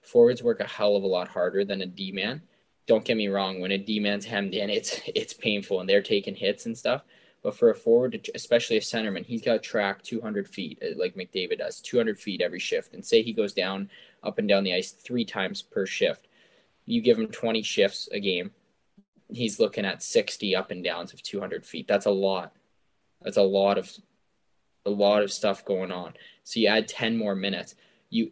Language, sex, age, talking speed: English, male, 20-39, 210 wpm